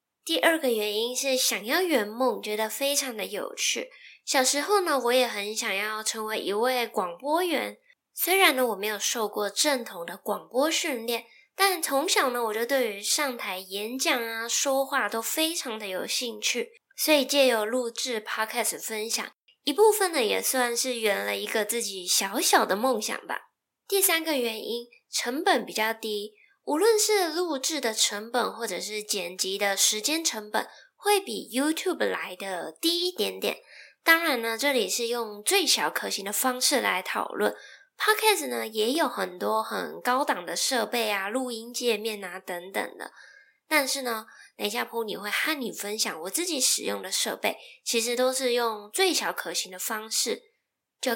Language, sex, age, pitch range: Chinese, female, 10-29, 220-315 Hz